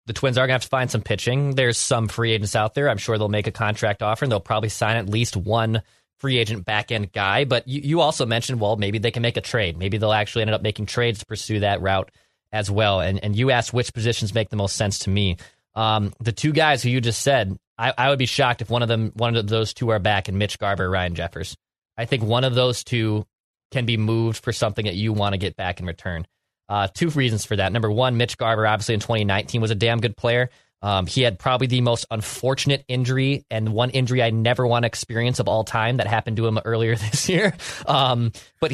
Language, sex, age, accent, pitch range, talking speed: English, male, 20-39, American, 110-130 Hz, 250 wpm